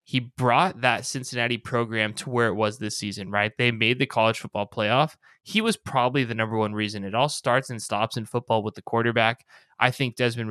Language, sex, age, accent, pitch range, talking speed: English, male, 20-39, American, 110-135 Hz, 215 wpm